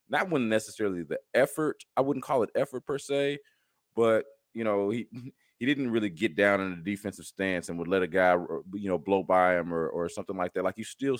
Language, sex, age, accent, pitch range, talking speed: English, male, 30-49, American, 85-110 Hz, 230 wpm